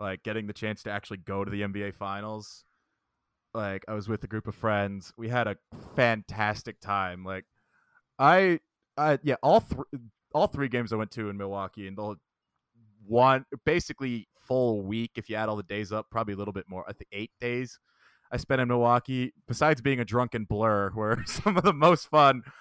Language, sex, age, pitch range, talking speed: English, male, 20-39, 100-125 Hz, 200 wpm